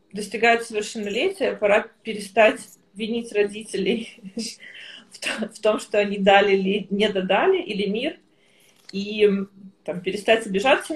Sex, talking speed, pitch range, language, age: female, 110 wpm, 195-225 Hz, Russian, 20-39